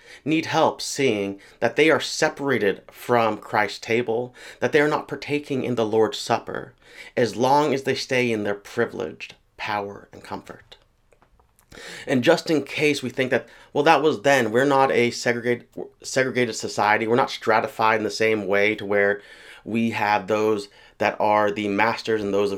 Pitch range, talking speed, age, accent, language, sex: 100-125 Hz, 170 wpm, 30-49, American, English, male